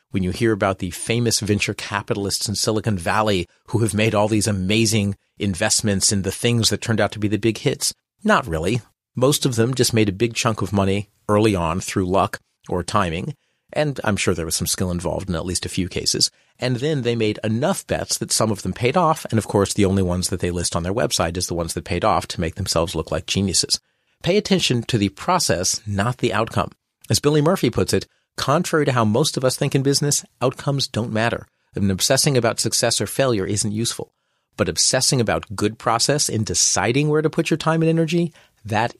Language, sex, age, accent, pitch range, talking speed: English, male, 40-59, American, 100-125 Hz, 225 wpm